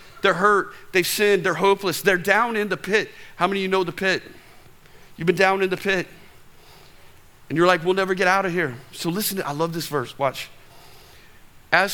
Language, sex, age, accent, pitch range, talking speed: English, male, 40-59, American, 145-205 Hz, 210 wpm